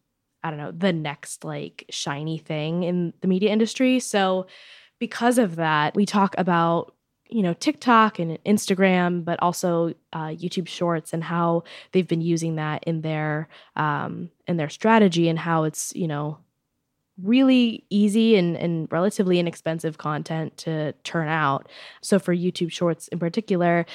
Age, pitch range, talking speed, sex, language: 10-29, 160-185 Hz, 155 wpm, female, English